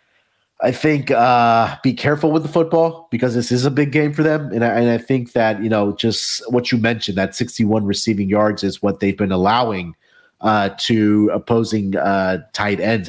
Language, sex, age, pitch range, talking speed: English, male, 30-49, 100-130 Hz, 195 wpm